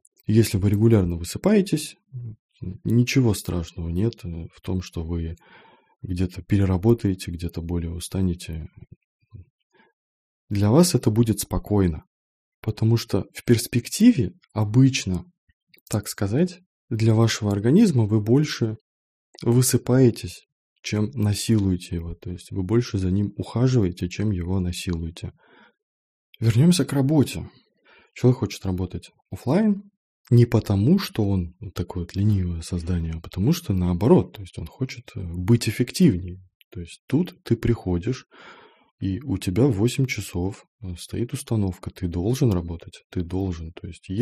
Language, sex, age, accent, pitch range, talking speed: Russian, male, 20-39, native, 90-120 Hz, 125 wpm